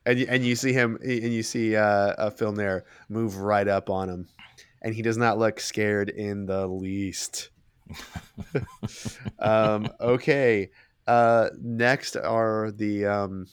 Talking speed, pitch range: 145 wpm, 95-115 Hz